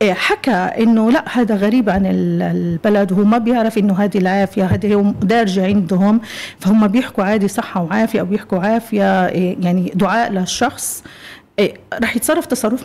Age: 40-59